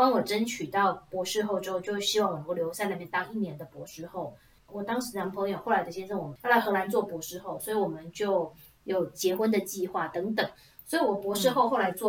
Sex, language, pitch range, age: female, Chinese, 180-220 Hz, 20-39